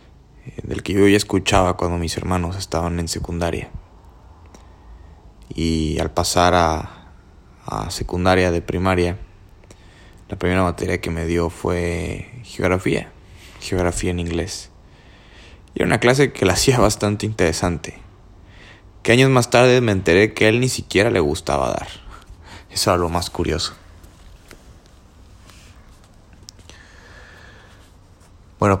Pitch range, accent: 85-95 Hz, Mexican